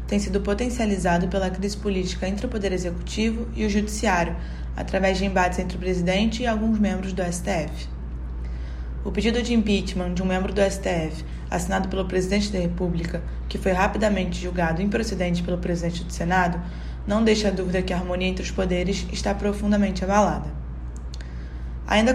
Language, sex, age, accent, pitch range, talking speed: Portuguese, female, 20-39, Brazilian, 175-205 Hz, 165 wpm